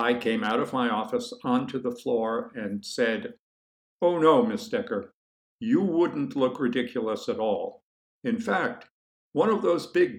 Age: 50-69